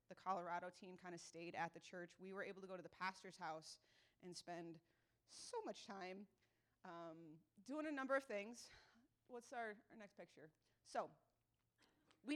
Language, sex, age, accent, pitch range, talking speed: English, female, 30-49, American, 170-210 Hz, 175 wpm